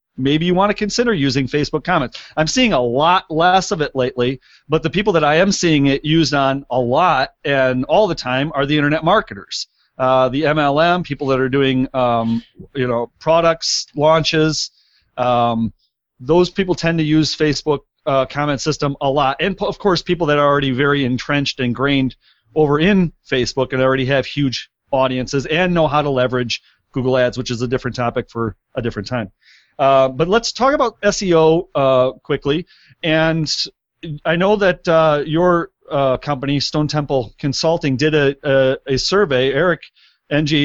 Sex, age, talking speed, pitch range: male, 40-59, 180 wpm, 130-165 Hz